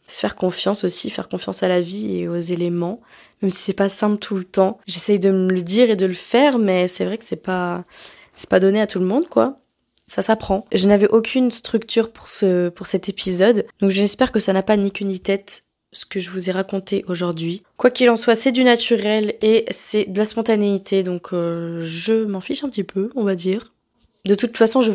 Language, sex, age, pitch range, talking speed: French, female, 20-39, 185-220 Hz, 235 wpm